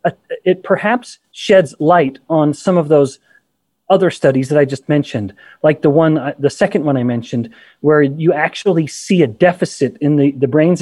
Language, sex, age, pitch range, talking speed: English, male, 30-49, 135-170 Hz, 190 wpm